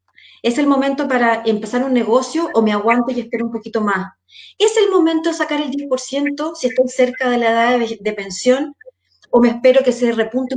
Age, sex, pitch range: 30-49, female, 220-315 Hz